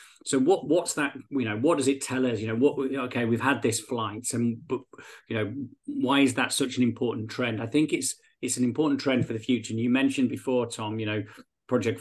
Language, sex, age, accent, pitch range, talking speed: English, male, 40-59, British, 110-130 Hz, 240 wpm